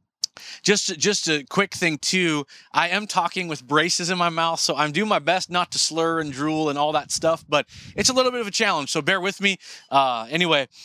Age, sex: 20-39, male